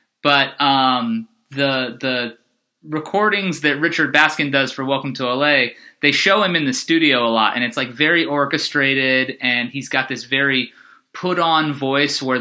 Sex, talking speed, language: male, 175 wpm, English